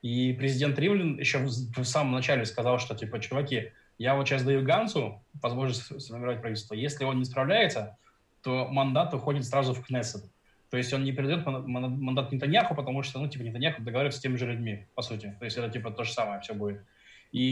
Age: 20-39